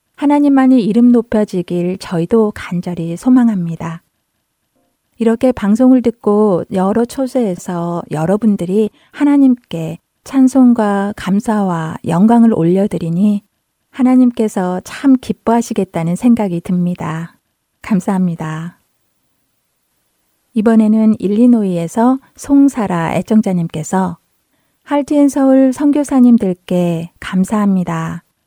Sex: female